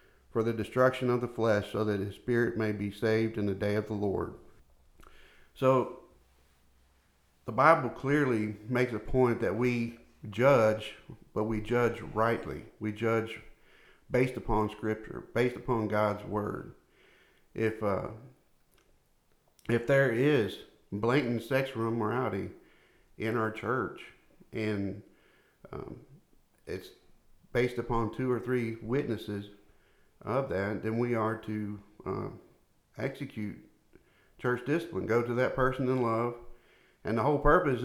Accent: American